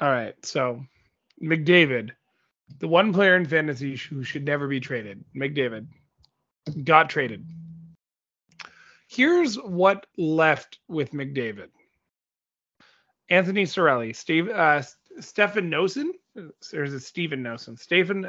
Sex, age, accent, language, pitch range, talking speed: male, 30-49, American, English, 135-180 Hz, 105 wpm